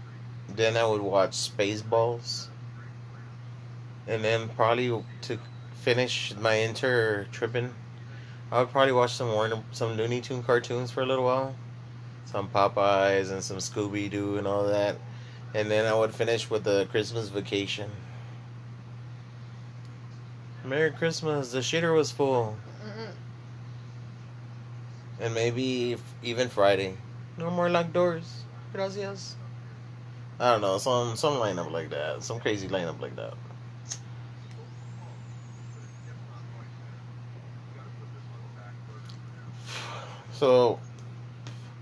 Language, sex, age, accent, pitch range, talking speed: English, male, 20-39, American, 115-120 Hz, 110 wpm